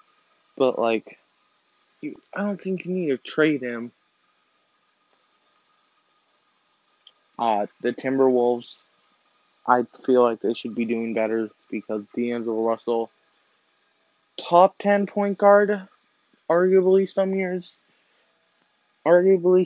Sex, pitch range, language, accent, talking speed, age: male, 120-155 Hz, English, American, 100 wpm, 20-39